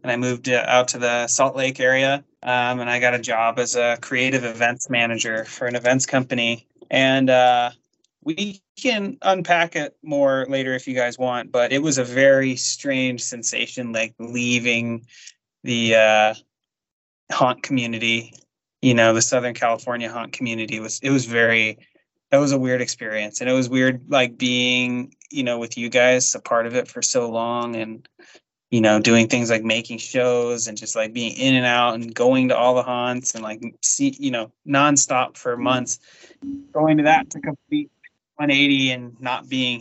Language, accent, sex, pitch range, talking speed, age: English, American, male, 120-135 Hz, 180 wpm, 20-39